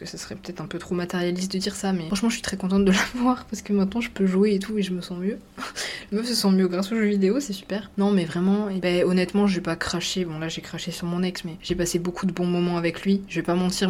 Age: 20-39